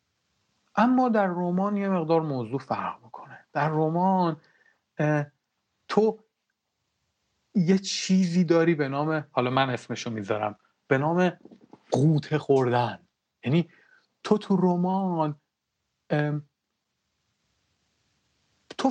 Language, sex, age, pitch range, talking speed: Persian, male, 40-59, 140-190 Hz, 90 wpm